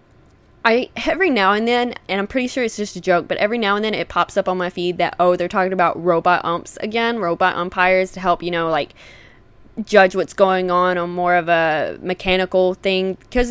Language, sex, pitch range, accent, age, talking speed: English, female, 180-245 Hz, American, 20-39, 220 wpm